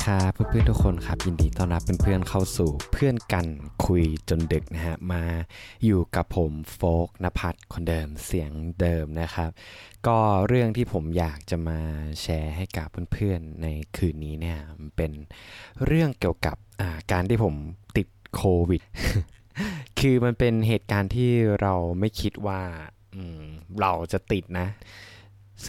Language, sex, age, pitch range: Thai, male, 20-39, 85-120 Hz